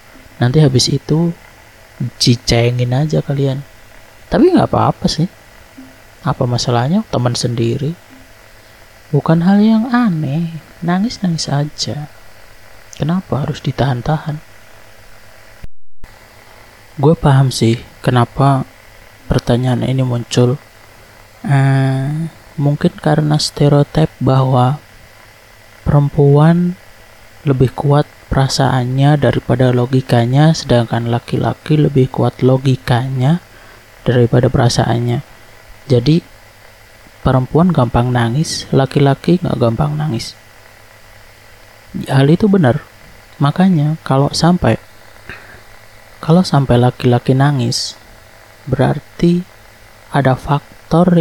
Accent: native